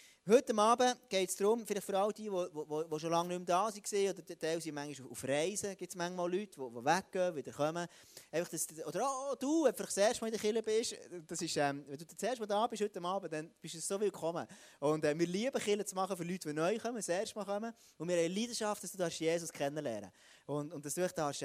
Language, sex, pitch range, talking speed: German, male, 150-205 Hz, 235 wpm